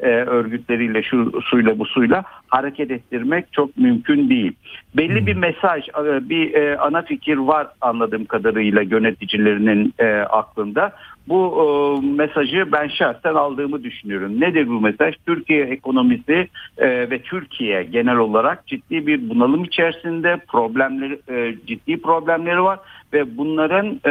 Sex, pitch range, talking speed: male, 125-165 Hz, 115 wpm